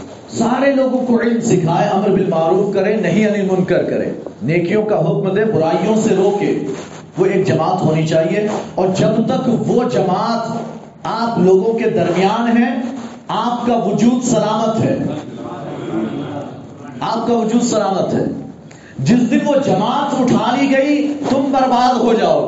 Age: 40-59